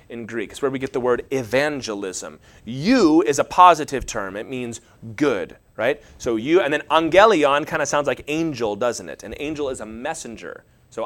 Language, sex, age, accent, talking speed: English, male, 30-49, American, 195 wpm